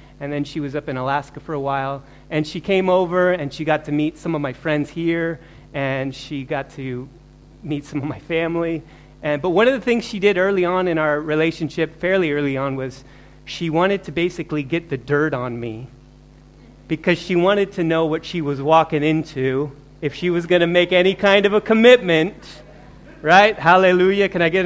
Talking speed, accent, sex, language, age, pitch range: 205 wpm, American, male, English, 30-49, 145-185 Hz